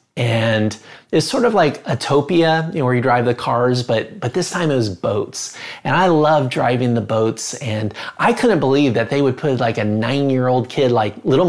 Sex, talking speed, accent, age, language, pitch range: male, 200 wpm, American, 30-49, English, 130-190 Hz